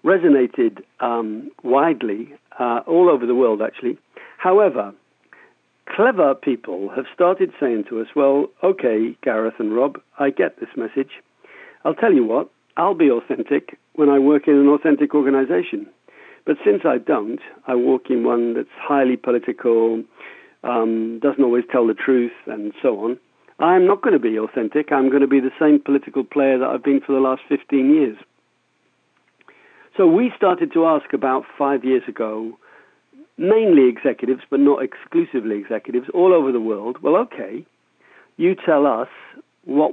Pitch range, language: 120-180 Hz, English